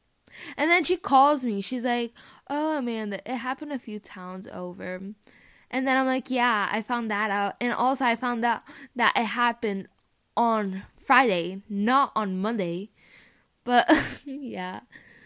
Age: 10-29